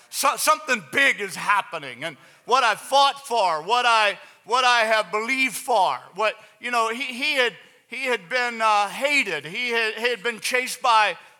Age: 50-69